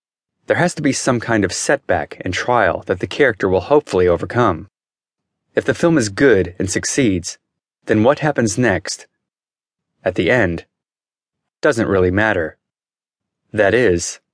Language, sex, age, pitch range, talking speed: English, male, 30-49, 95-130 Hz, 145 wpm